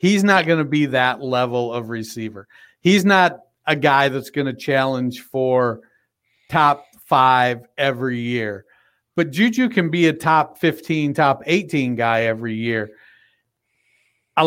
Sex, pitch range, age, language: male, 130-160 Hz, 50-69, English